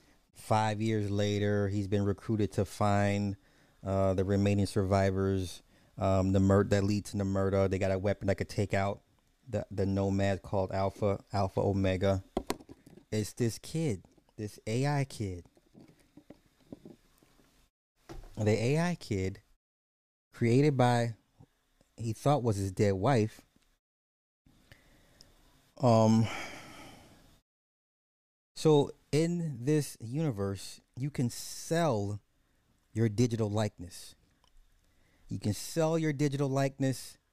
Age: 20-39